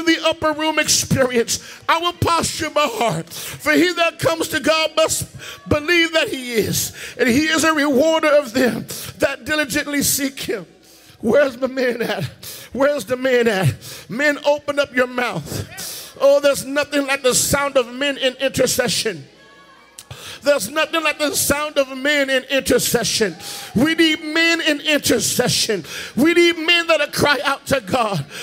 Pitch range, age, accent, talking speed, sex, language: 250-315 Hz, 50-69, American, 165 wpm, male, English